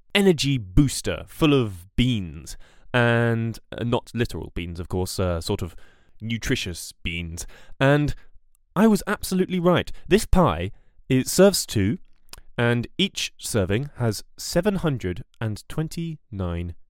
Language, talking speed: English, 115 wpm